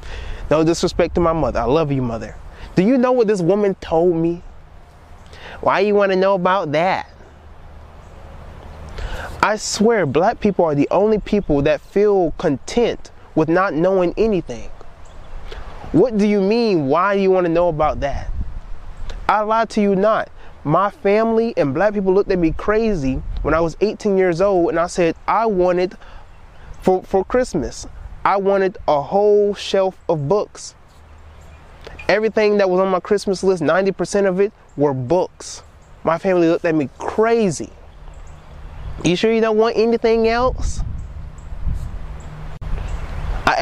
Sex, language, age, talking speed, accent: male, English, 20-39, 155 wpm, American